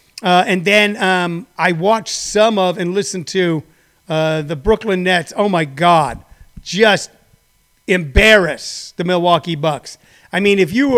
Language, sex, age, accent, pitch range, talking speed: English, male, 30-49, American, 165-205 Hz, 150 wpm